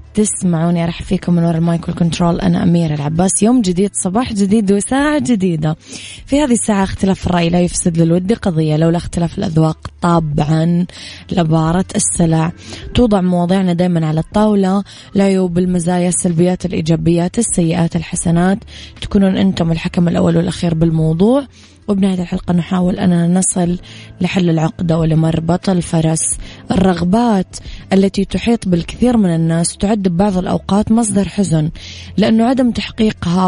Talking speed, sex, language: 130 wpm, female, English